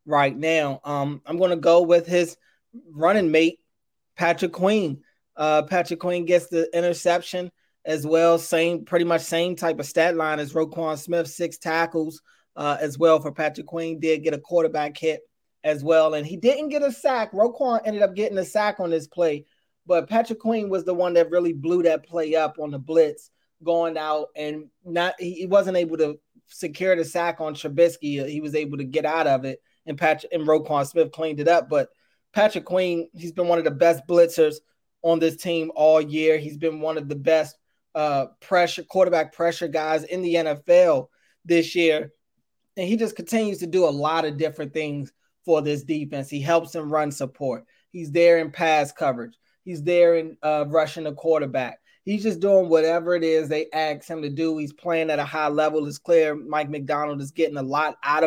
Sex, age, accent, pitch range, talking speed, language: male, 20-39, American, 155-175 Hz, 200 wpm, English